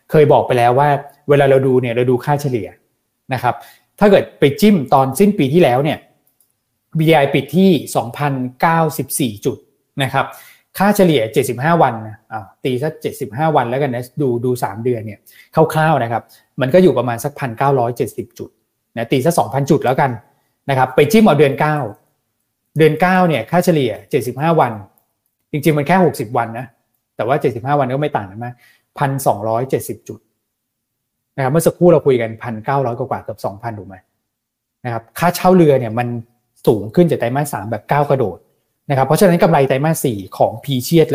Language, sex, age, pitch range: Thai, male, 20-39, 120-150 Hz